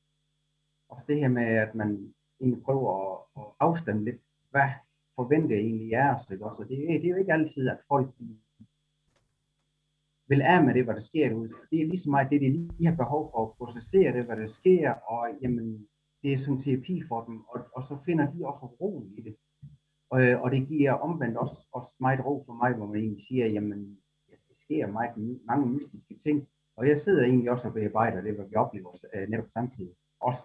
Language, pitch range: Danish, 115-150 Hz